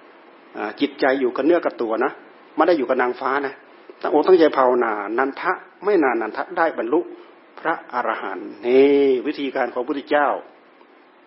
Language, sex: Thai, male